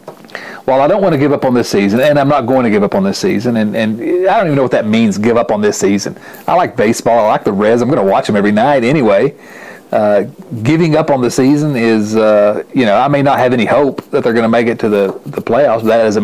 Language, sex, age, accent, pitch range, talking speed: English, male, 40-59, American, 110-150 Hz, 290 wpm